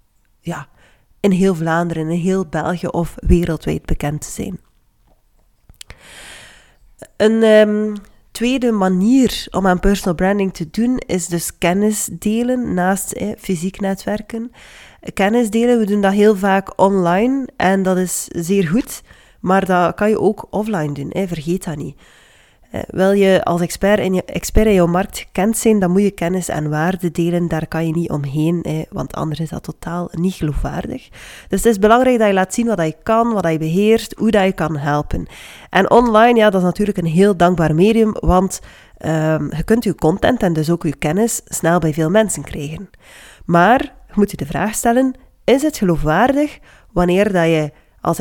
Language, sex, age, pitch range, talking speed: Dutch, female, 30-49, 170-215 Hz, 175 wpm